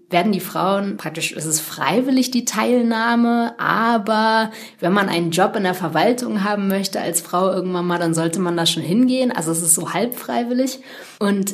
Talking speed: 185 wpm